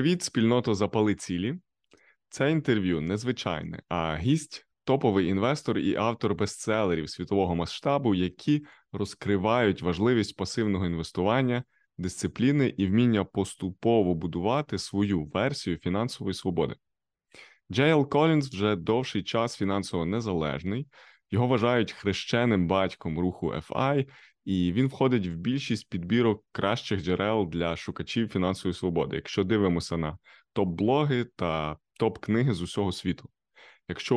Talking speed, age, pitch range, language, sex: 115 wpm, 20-39, 95-130 Hz, Ukrainian, male